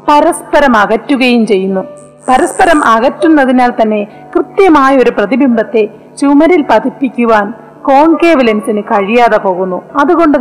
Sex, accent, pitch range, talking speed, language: female, native, 235-310 Hz, 85 wpm, Malayalam